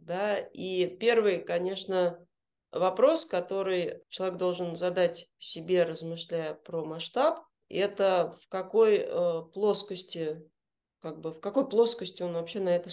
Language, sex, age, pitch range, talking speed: Russian, female, 30-49, 170-230 Hz, 125 wpm